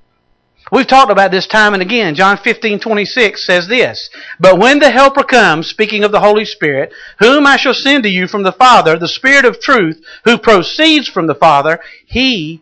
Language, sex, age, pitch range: English, male, 50-69, 155-240 Hz